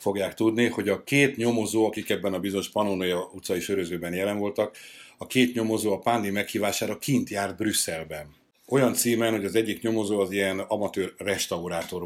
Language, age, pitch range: Hungarian, 60-79, 95-110 Hz